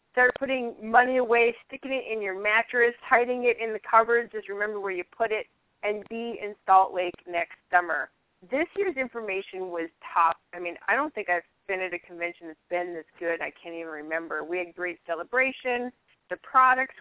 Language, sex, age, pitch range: English, female, 30-49, 180-235 Hz